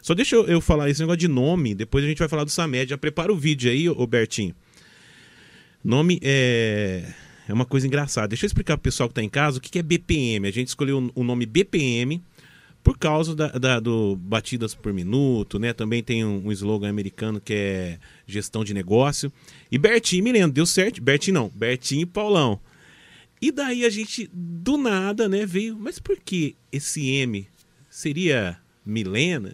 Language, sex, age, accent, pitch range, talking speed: Portuguese, male, 30-49, Brazilian, 120-175 Hz, 185 wpm